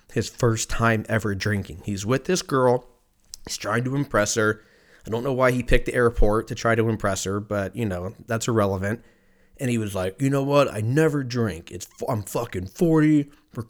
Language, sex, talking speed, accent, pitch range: English, male, 205 wpm, American, 105-135 Hz